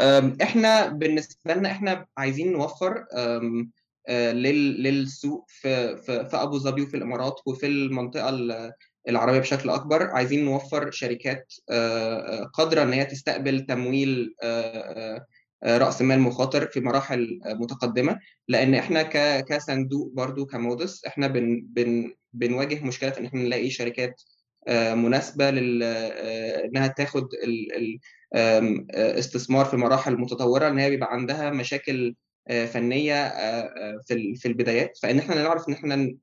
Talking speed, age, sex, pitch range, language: 105 wpm, 20-39, male, 120-140 Hz, Arabic